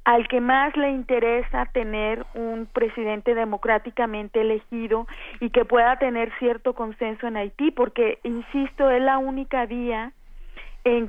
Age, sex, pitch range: 30-49, female, 220-255 Hz